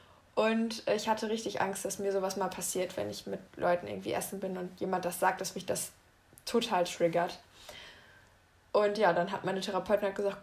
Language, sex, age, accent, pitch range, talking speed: German, female, 20-39, German, 195-235 Hz, 190 wpm